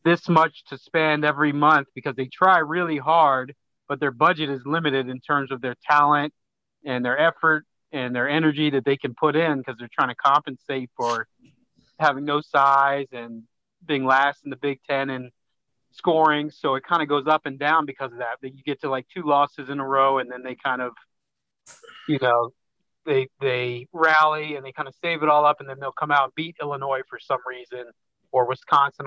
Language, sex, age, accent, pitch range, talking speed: English, male, 30-49, American, 125-150 Hz, 210 wpm